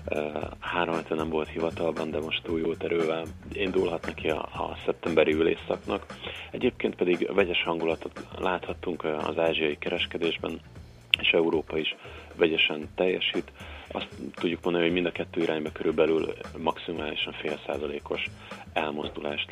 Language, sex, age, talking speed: Hungarian, male, 30-49, 125 wpm